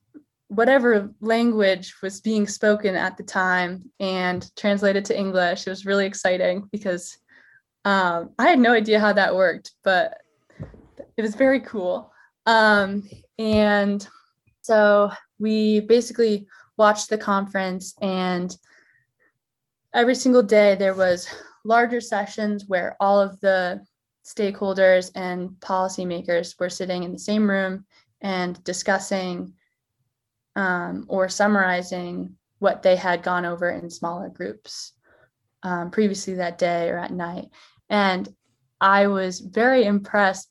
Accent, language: American, English